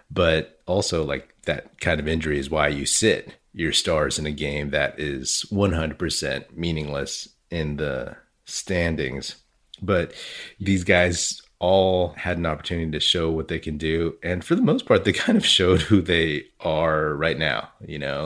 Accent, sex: American, male